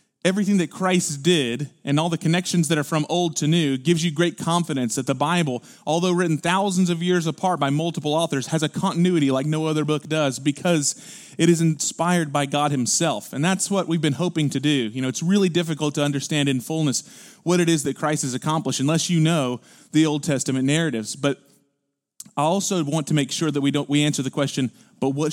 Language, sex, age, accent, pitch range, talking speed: English, male, 30-49, American, 135-170 Hz, 220 wpm